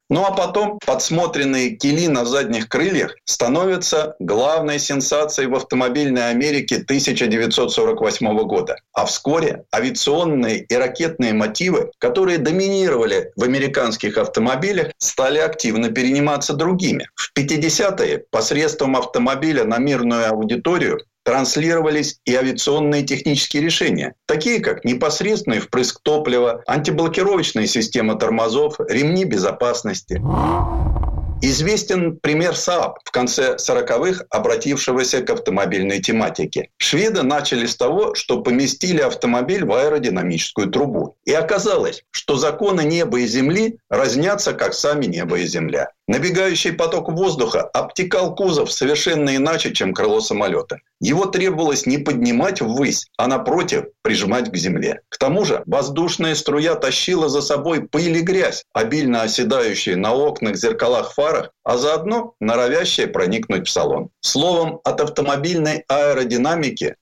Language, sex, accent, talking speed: Russian, male, native, 120 wpm